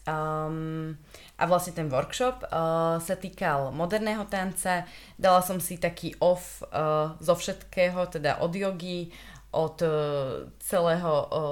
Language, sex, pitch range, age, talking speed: Slovak, female, 155-180 Hz, 20-39, 105 wpm